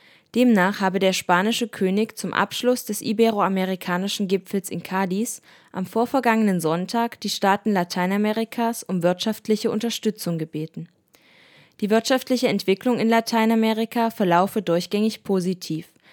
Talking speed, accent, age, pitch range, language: 110 wpm, German, 20-39, 190-230 Hz, German